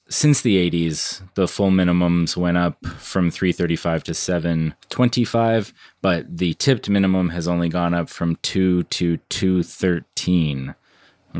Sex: male